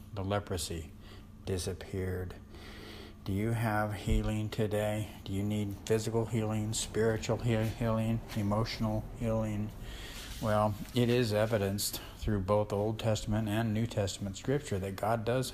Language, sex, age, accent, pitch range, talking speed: English, male, 60-79, American, 100-115 Hz, 125 wpm